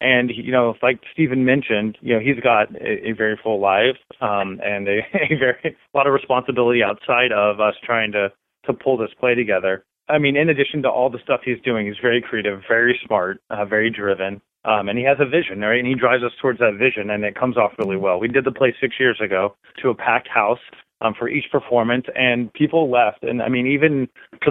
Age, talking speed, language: 30-49, 235 wpm, English